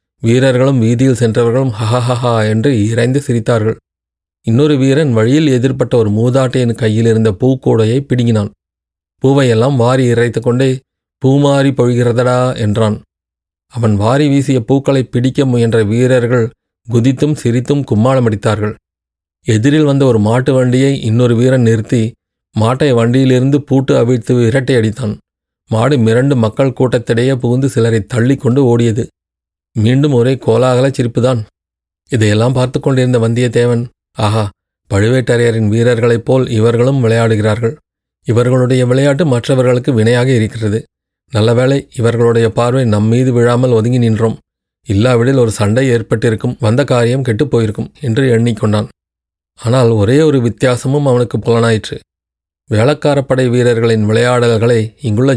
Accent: native